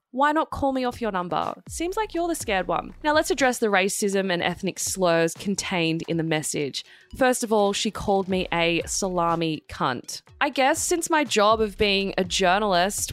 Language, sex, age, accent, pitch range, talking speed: English, female, 20-39, Australian, 190-270 Hz, 195 wpm